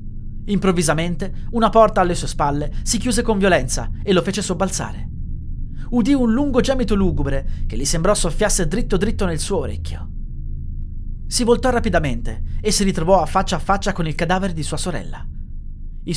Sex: male